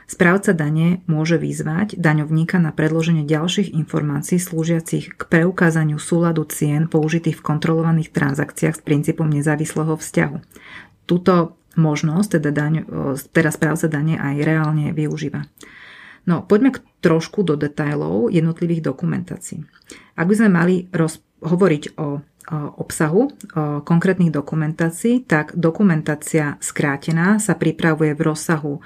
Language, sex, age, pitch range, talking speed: Slovak, female, 30-49, 150-175 Hz, 120 wpm